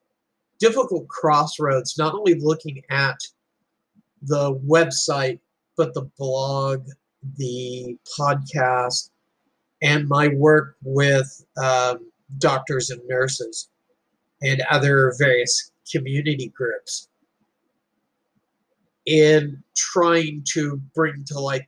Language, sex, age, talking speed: English, male, 40-59, 90 wpm